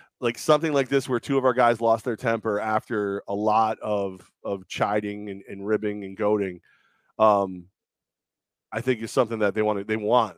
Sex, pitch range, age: male, 105-125 Hz, 30-49